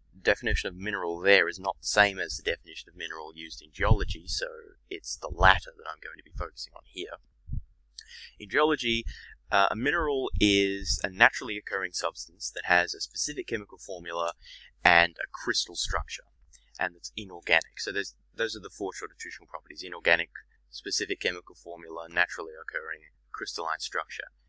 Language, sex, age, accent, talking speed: English, male, 20-39, Australian, 160 wpm